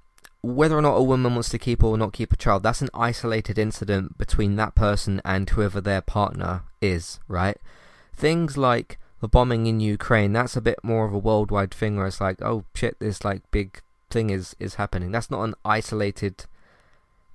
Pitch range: 95-120 Hz